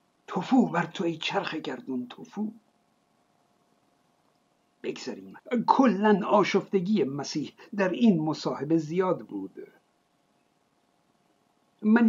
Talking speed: 85 wpm